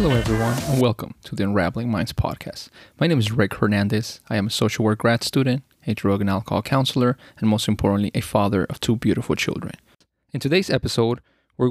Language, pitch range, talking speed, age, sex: English, 115-130 Hz, 200 wpm, 20-39, male